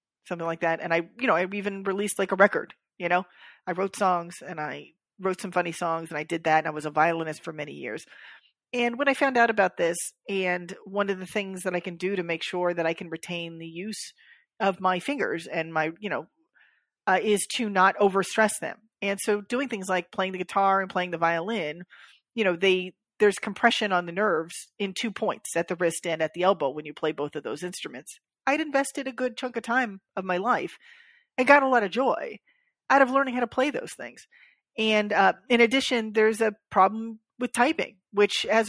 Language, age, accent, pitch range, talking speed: English, 40-59, American, 175-230 Hz, 225 wpm